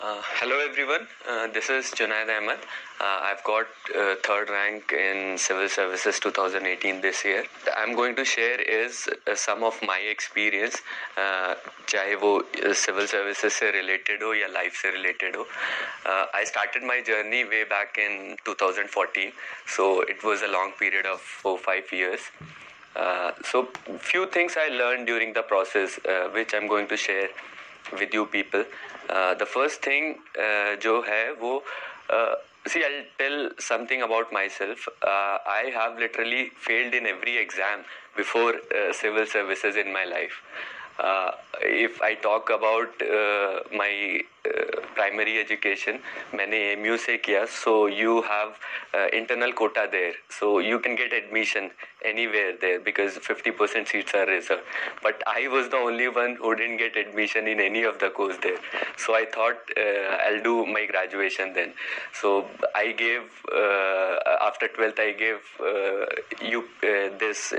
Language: Hindi